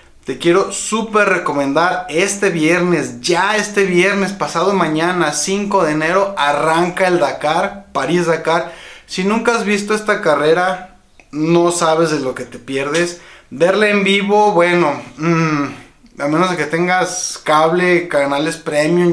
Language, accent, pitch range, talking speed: Spanish, Mexican, 150-195 Hz, 140 wpm